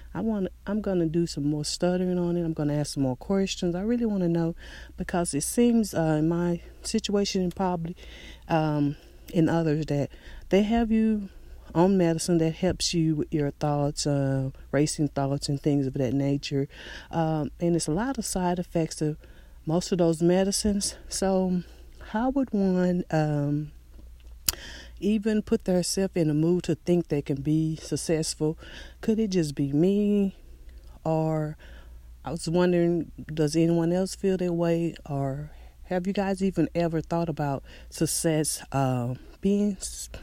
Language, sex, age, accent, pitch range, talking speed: English, female, 40-59, American, 150-185 Hz, 170 wpm